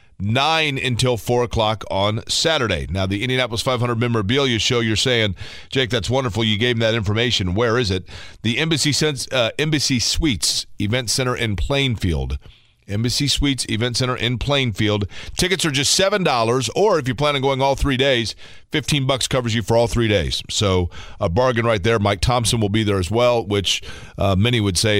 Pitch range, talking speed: 100-130 Hz, 185 wpm